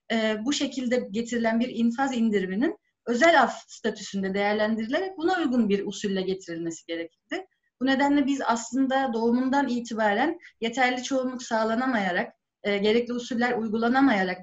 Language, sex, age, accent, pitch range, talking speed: Turkish, female, 30-49, native, 215-270 Hz, 125 wpm